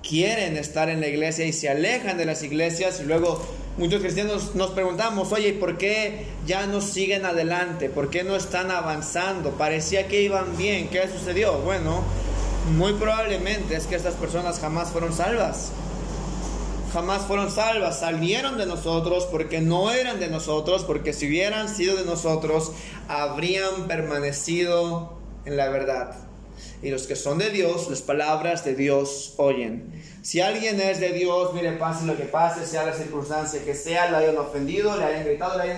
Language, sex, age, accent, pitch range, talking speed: Spanish, male, 30-49, Mexican, 145-185 Hz, 170 wpm